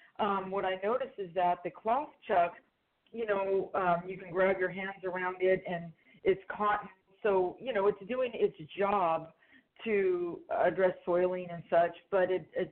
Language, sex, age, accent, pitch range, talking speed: English, female, 40-59, American, 175-205 Hz, 175 wpm